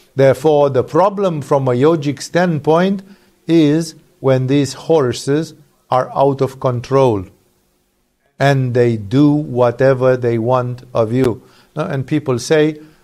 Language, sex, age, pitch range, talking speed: English, male, 50-69, 130-175 Hz, 120 wpm